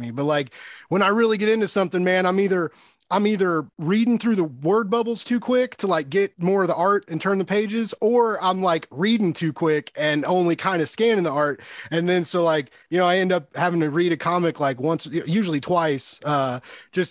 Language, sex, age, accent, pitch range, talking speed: English, male, 30-49, American, 155-200 Hz, 230 wpm